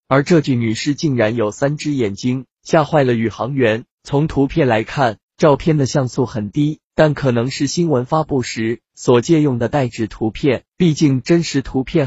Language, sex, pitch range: Chinese, male, 115-150 Hz